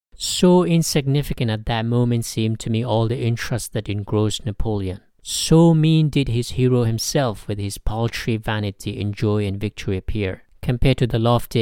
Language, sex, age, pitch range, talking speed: English, male, 50-69, 105-130 Hz, 170 wpm